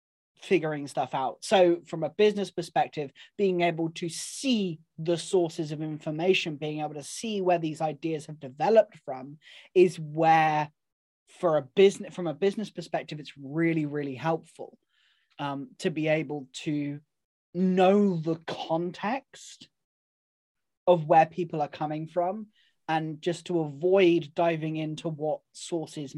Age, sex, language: 20-39, male, English